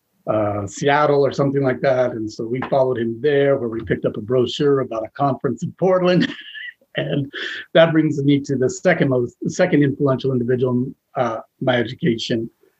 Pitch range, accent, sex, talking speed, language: 120-145 Hz, American, male, 175 wpm, English